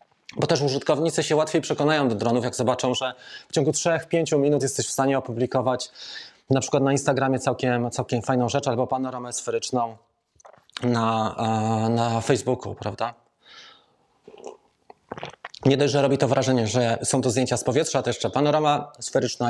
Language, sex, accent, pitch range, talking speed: Polish, male, native, 120-150 Hz, 155 wpm